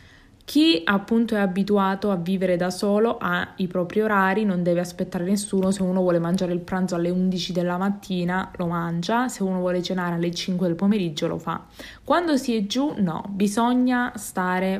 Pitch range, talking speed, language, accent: 185-225 Hz, 185 wpm, Italian, native